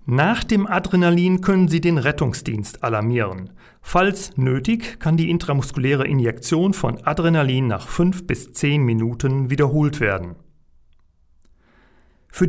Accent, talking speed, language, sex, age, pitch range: German, 115 wpm, German, male, 40-59, 120-170 Hz